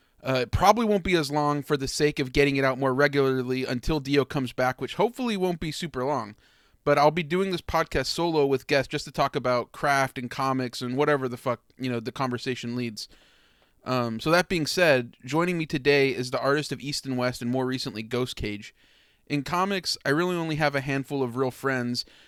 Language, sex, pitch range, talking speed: English, male, 125-145 Hz, 220 wpm